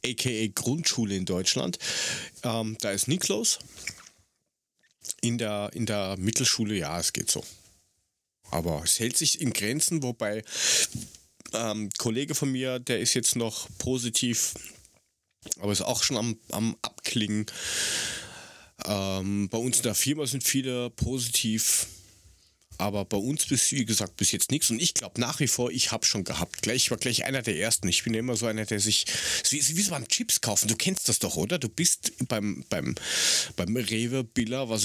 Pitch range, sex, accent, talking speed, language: 105-130 Hz, male, German, 175 wpm, German